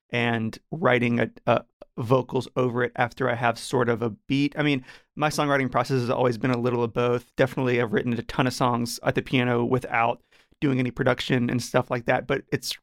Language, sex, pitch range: English, male, 125-135 Hz